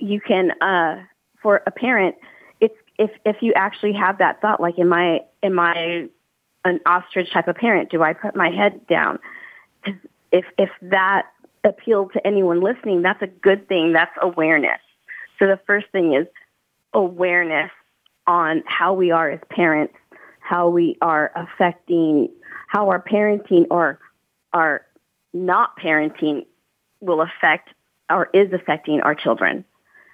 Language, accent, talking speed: English, American, 145 wpm